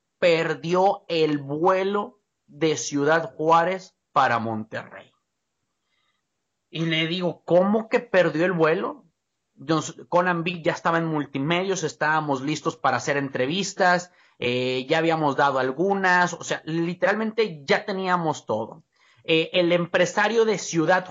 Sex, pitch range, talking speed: male, 150-190 Hz, 120 wpm